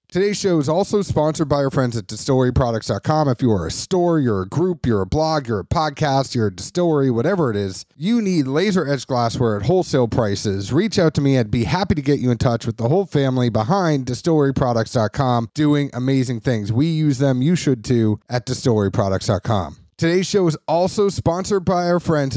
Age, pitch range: 30-49, 125-165 Hz